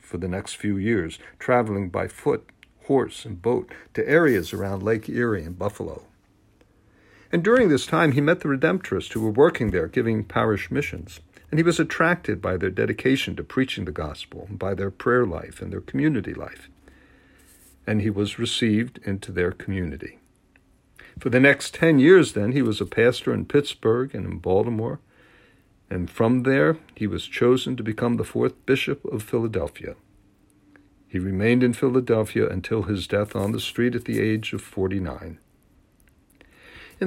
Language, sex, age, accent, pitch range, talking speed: English, male, 60-79, American, 100-125 Hz, 165 wpm